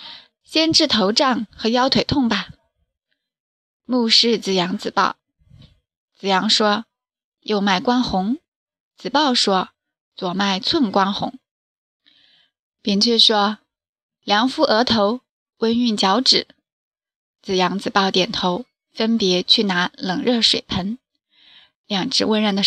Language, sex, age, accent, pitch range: Chinese, female, 20-39, native, 195-255 Hz